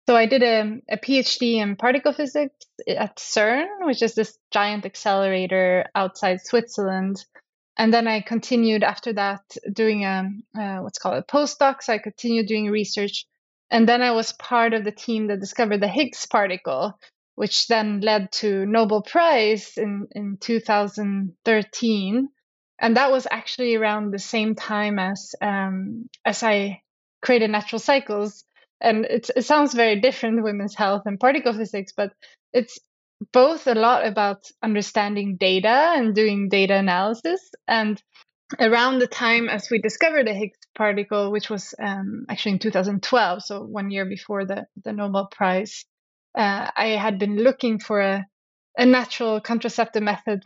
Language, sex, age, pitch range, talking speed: English, female, 20-39, 200-235 Hz, 155 wpm